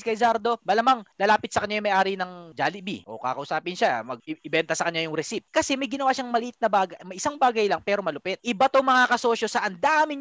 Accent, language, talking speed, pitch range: native, Filipino, 205 wpm, 195-250 Hz